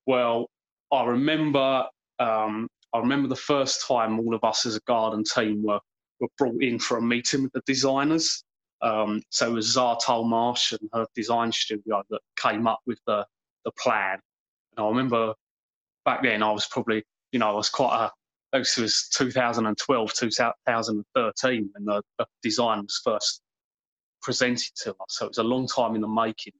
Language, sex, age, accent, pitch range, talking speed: English, male, 20-39, British, 110-130 Hz, 190 wpm